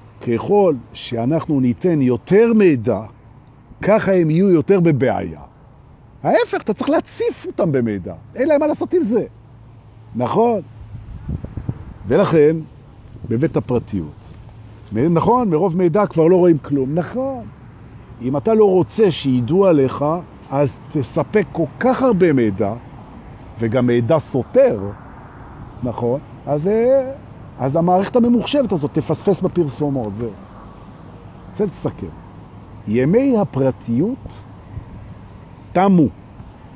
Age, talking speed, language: 50-69, 100 wpm, Hebrew